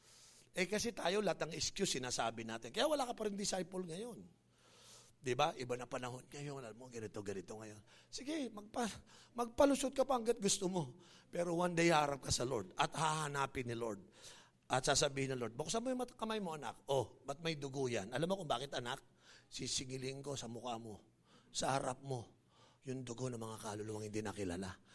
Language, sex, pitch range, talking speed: English, male, 115-165 Hz, 190 wpm